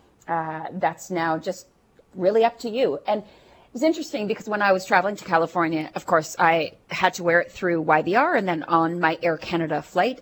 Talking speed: 205 wpm